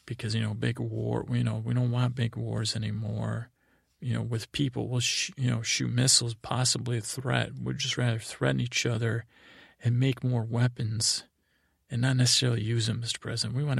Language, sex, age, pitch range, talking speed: English, male, 40-59, 115-125 Hz, 190 wpm